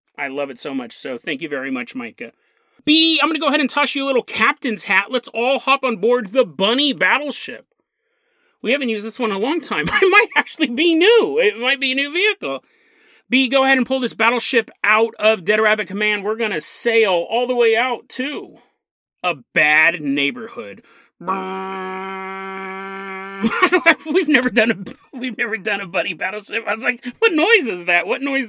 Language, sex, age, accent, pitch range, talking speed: English, male, 30-49, American, 195-280 Hz, 200 wpm